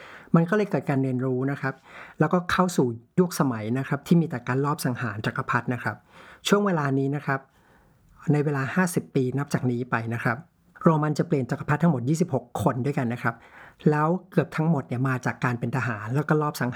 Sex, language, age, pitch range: male, Thai, 60-79, 125-155 Hz